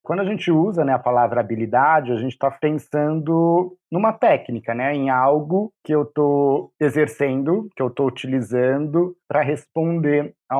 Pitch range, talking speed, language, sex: 125-155 Hz, 160 wpm, Portuguese, male